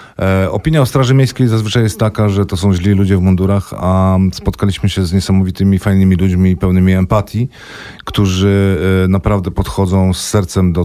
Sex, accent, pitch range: male, native, 90-105 Hz